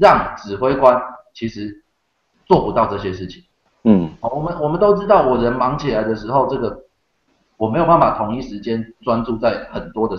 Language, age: Chinese, 30-49